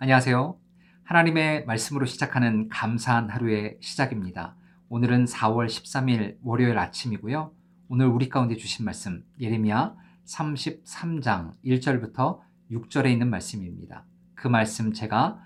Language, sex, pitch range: Korean, male, 115-160 Hz